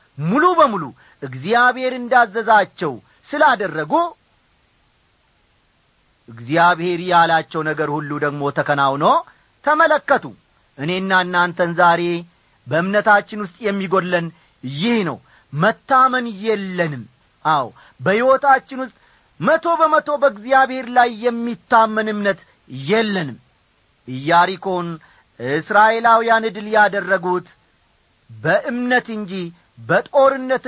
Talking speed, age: 80 wpm, 40-59